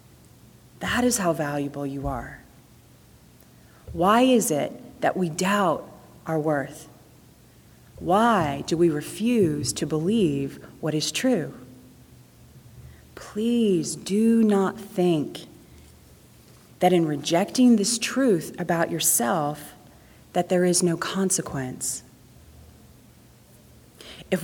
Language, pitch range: English, 165-230 Hz